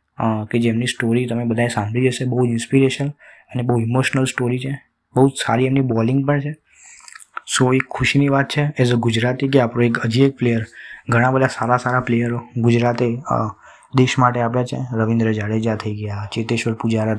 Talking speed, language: 155 wpm, Gujarati